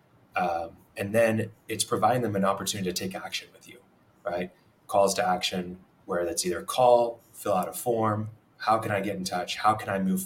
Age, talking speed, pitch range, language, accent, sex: 20-39, 205 wpm, 95-110 Hz, English, American, male